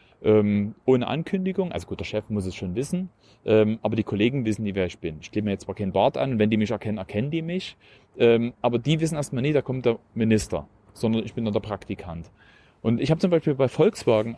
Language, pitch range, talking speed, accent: German, 110-150 Hz, 225 wpm, German